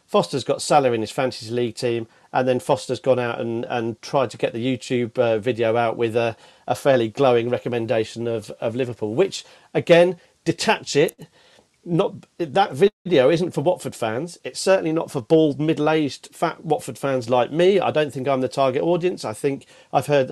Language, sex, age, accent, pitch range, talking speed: English, male, 40-59, British, 125-170 Hz, 190 wpm